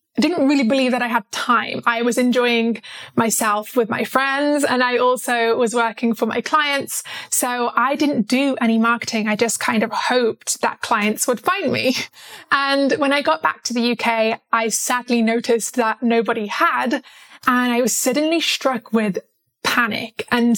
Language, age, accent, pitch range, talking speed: English, 20-39, British, 230-265 Hz, 180 wpm